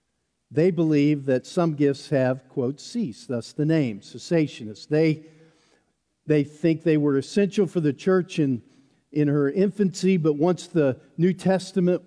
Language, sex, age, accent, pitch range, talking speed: English, male, 50-69, American, 140-175 Hz, 150 wpm